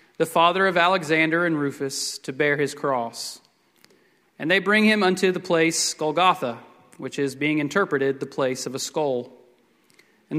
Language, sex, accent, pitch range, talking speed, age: English, male, American, 140-185 Hz, 160 wpm, 30-49